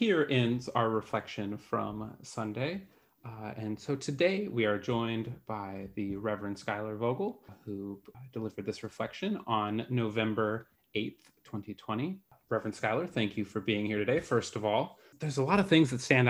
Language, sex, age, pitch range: English, male, 30-49, 110-130 Hz